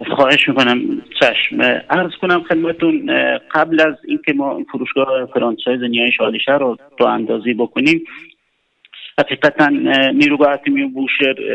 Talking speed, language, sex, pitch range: 120 wpm, Persian, male, 130-185 Hz